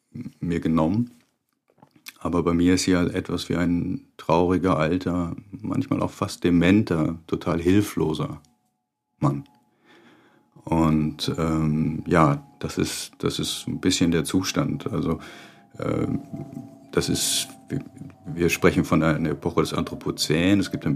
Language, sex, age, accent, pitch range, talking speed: German, male, 50-69, German, 80-90 Hz, 130 wpm